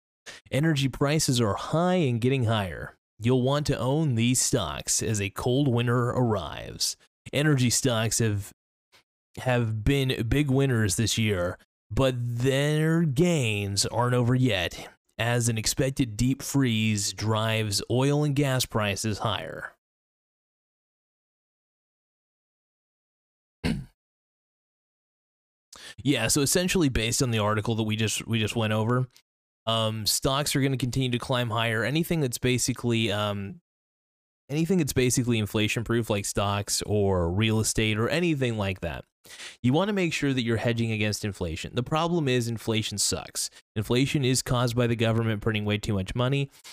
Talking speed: 145 wpm